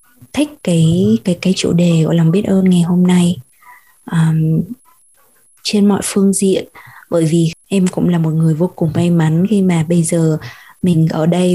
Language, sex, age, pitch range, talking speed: Vietnamese, female, 20-39, 160-190 Hz, 185 wpm